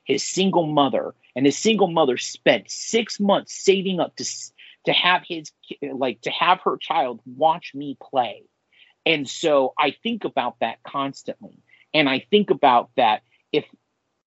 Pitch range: 130-195 Hz